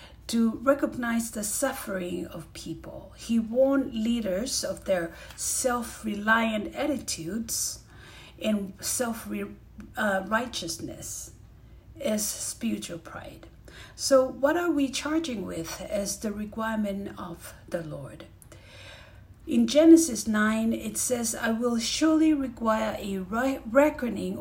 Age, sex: 50-69, female